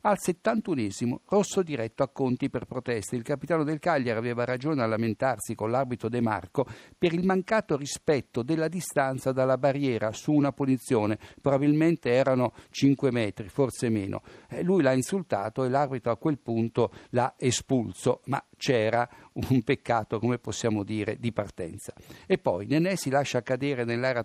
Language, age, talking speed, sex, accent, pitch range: Italian, 60-79, 155 wpm, male, native, 115-145 Hz